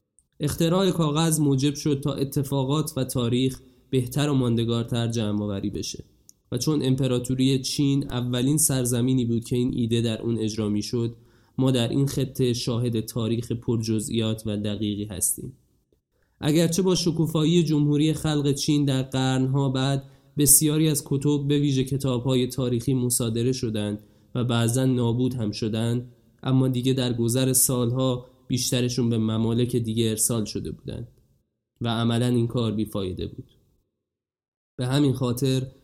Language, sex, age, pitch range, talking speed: Persian, male, 20-39, 115-140 Hz, 135 wpm